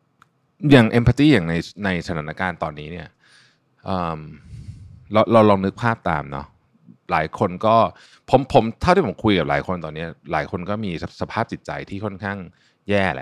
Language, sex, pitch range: Thai, male, 80-110 Hz